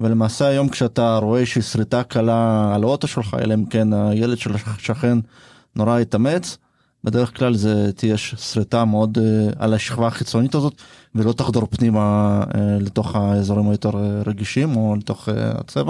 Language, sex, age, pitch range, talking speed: Hebrew, male, 20-39, 105-125 Hz, 160 wpm